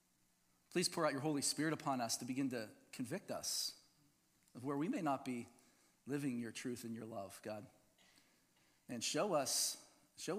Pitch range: 125-175 Hz